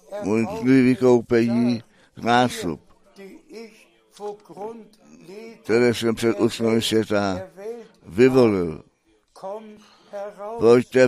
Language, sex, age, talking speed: Czech, male, 60-79, 55 wpm